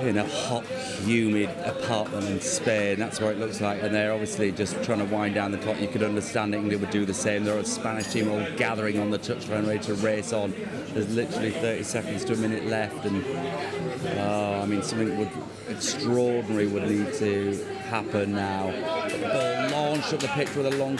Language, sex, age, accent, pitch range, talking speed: English, male, 30-49, British, 110-165 Hz, 210 wpm